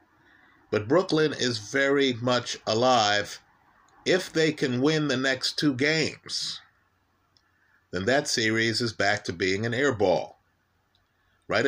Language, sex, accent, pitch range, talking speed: English, male, American, 100-135 Hz, 130 wpm